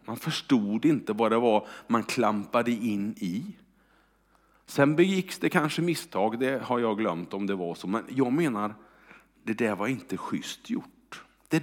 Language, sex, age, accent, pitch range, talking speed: Swedish, male, 50-69, Norwegian, 115-180 Hz, 170 wpm